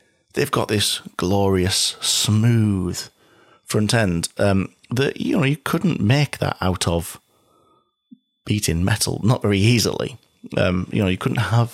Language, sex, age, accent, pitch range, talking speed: English, male, 30-49, British, 90-115 Hz, 145 wpm